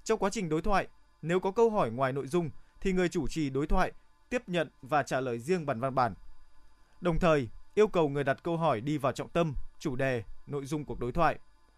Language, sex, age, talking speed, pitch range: Vietnamese, male, 20-39, 235 wpm, 135-175 Hz